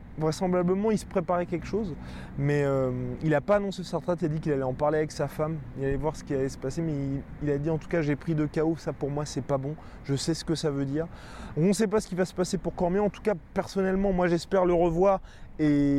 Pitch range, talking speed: 135-170 Hz, 290 wpm